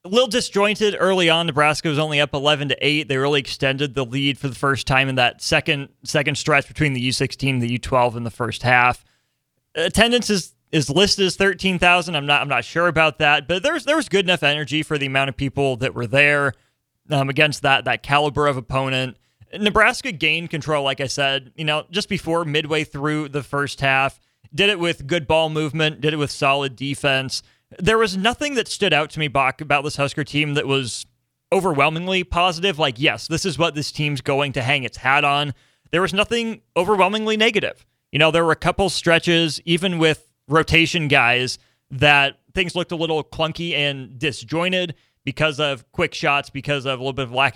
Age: 30-49